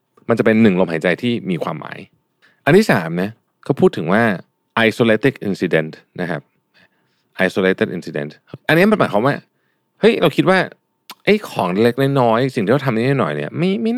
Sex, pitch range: male, 95-155 Hz